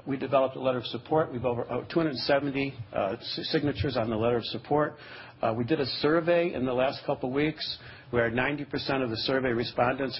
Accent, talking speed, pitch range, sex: American, 195 wpm, 120-140 Hz, male